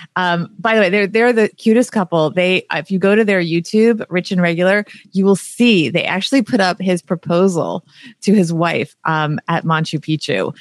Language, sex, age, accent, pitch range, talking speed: English, female, 30-49, American, 170-210 Hz, 200 wpm